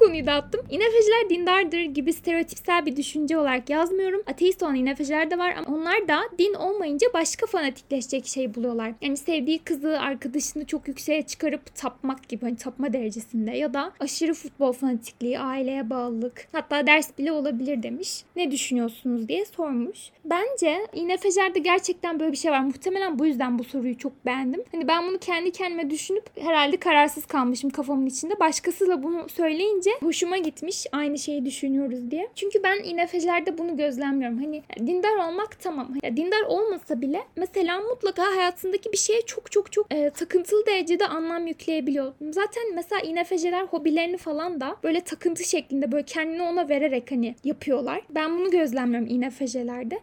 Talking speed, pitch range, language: 155 wpm, 280-365 Hz, Turkish